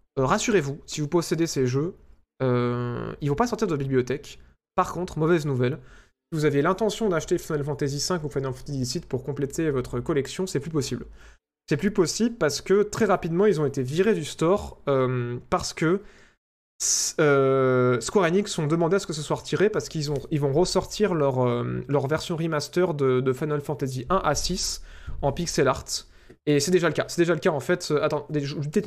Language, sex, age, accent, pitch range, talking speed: French, male, 30-49, French, 130-175 Hz, 205 wpm